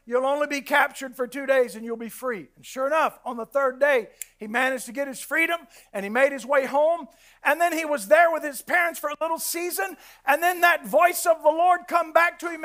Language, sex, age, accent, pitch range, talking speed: English, male, 50-69, American, 295-375 Hz, 250 wpm